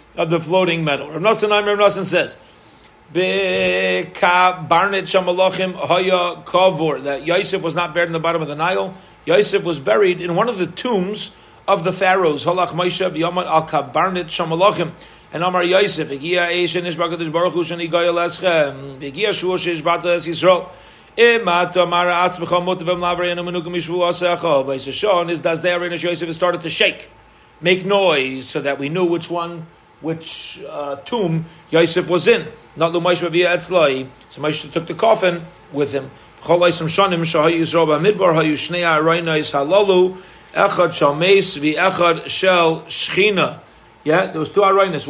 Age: 40-59